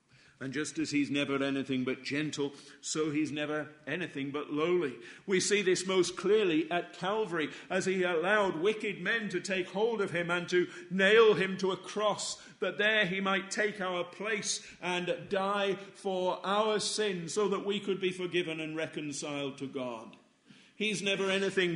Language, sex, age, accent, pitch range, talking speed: English, male, 50-69, British, 130-180 Hz, 175 wpm